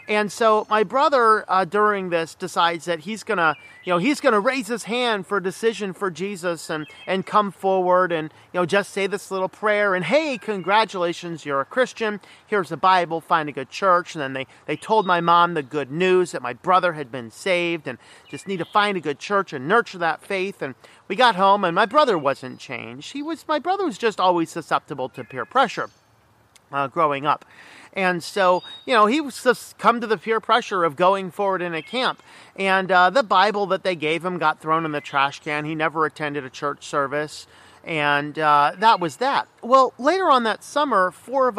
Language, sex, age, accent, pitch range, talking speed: English, male, 40-59, American, 165-215 Hz, 220 wpm